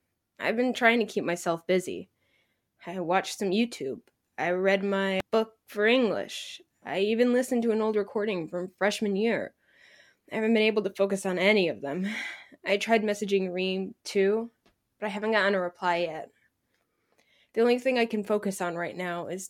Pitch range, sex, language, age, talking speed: 195-245 Hz, female, English, 10-29, 180 wpm